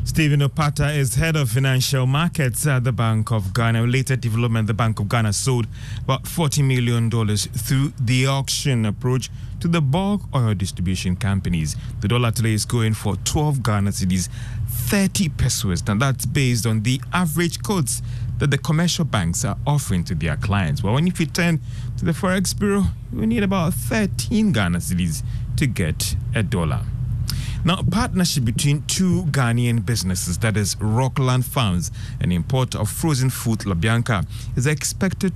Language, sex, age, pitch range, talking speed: English, male, 30-49, 110-140 Hz, 165 wpm